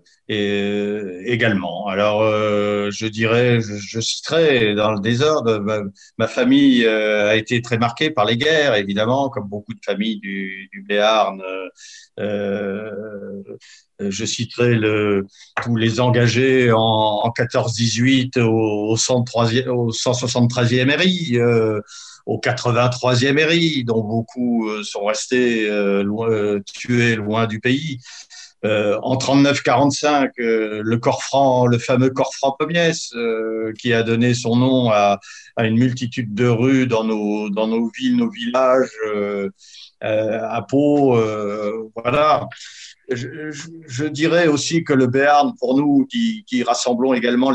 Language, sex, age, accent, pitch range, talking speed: French, male, 50-69, French, 110-130 Hz, 140 wpm